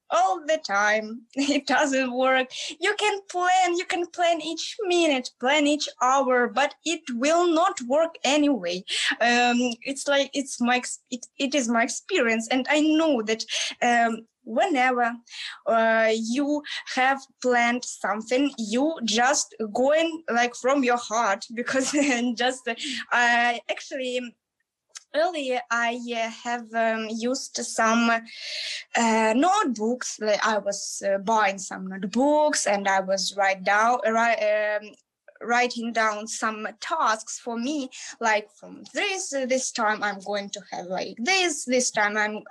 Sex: female